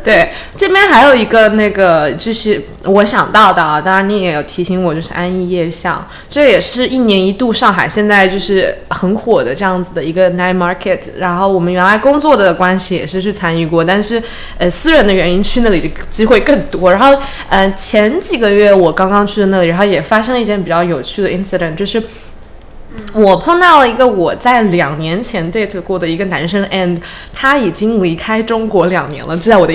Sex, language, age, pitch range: female, Chinese, 20-39, 180-245 Hz